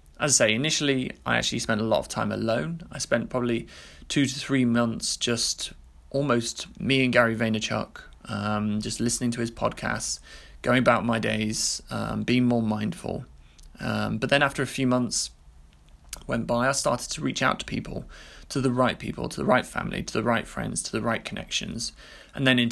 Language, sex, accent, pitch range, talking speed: English, male, British, 110-125 Hz, 195 wpm